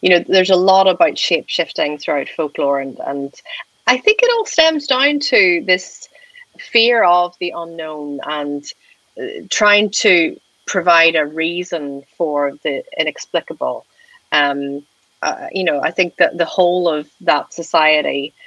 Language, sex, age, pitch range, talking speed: English, female, 30-49, 155-205 Hz, 145 wpm